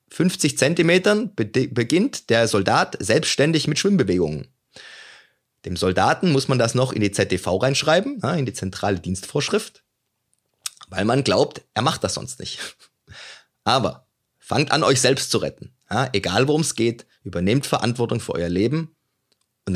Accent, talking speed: German, 145 wpm